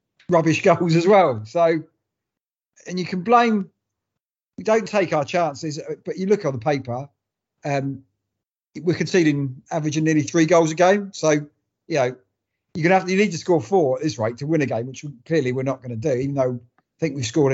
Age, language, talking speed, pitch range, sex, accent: 40-59, English, 205 wpm, 130-170 Hz, male, British